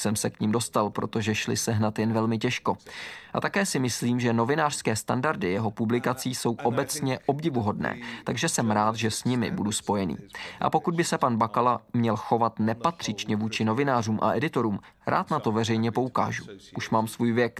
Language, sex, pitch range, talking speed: Czech, male, 110-125 Hz, 185 wpm